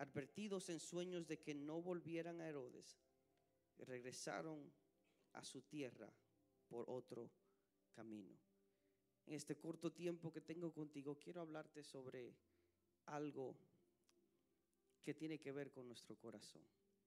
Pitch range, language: 120-160 Hz, English